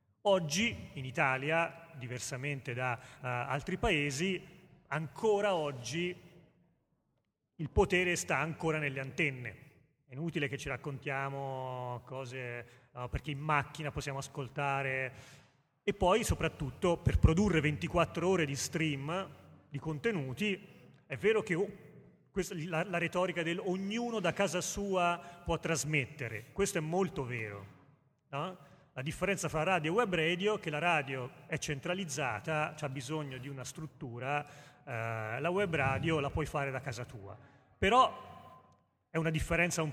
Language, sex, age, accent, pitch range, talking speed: Italian, male, 30-49, native, 135-175 Hz, 130 wpm